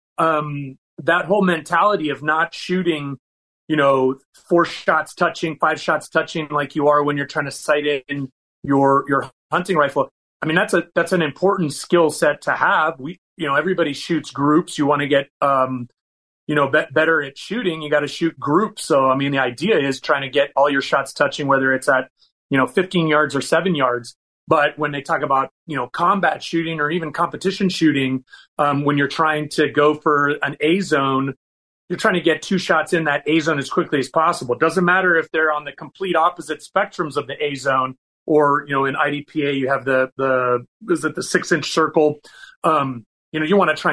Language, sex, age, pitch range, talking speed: English, male, 30-49, 140-165 Hz, 210 wpm